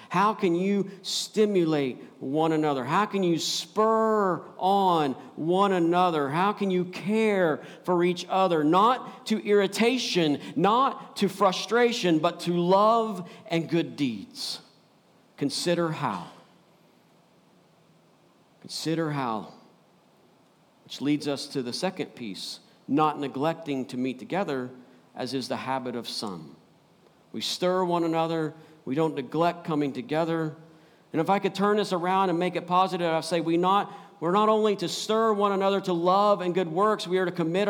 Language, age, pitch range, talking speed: English, 50-69, 170-220 Hz, 145 wpm